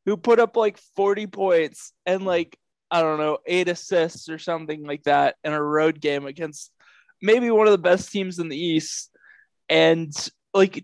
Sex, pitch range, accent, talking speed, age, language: male, 145-190 Hz, American, 185 wpm, 20-39, English